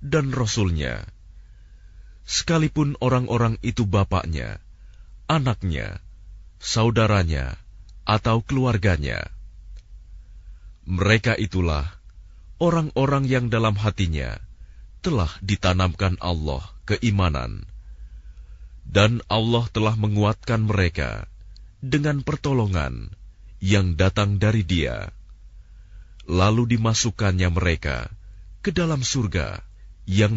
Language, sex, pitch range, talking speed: Indonesian, male, 90-115 Hz, 75 wpm